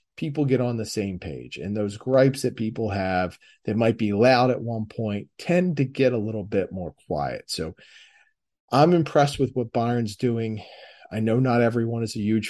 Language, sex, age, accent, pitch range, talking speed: English, male, 40-59, American, 105-130 Hz, 195 wpm